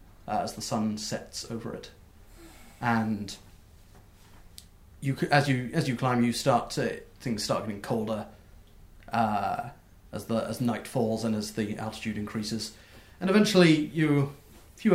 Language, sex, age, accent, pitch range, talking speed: English, male, 30-49, British, 105-130 Hz, 150 wpm